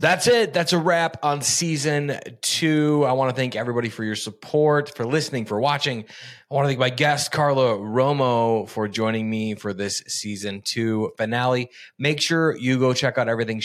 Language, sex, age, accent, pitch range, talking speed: English, male, 20-39, American, 115-145 Hz, 190 wpm